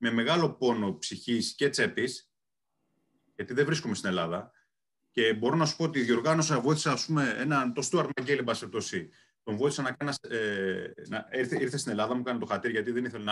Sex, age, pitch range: male, 30-49, 115-140 Hz